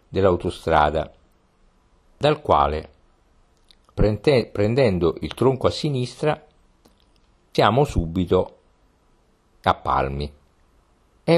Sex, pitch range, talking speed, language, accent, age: male, 90-120 Hz, 70 wpm, Italian, native, 50-69